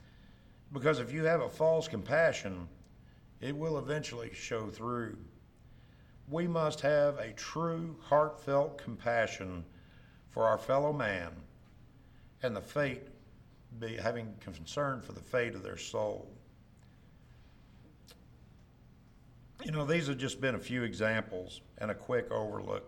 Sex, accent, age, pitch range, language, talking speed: male, American, 60-79, 105-140 Hz, English, 125 wpm